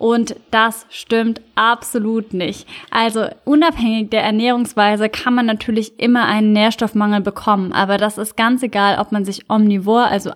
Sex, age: female, 10-29